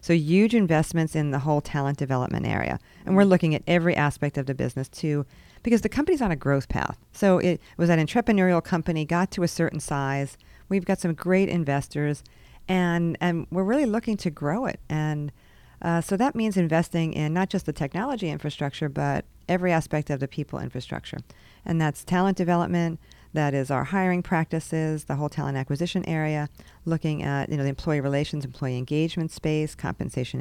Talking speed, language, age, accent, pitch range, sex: 185 wpm, English, 40-59, American, 145-175 Hz, female